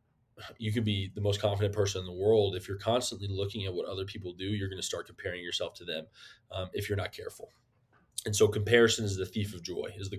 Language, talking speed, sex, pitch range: English, 245 wpm, male, 95-110 Hz